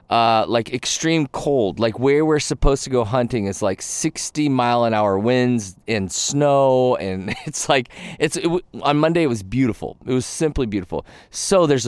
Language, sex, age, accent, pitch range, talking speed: English, male, 30-49, American, 100-135 Hz, 180 wpm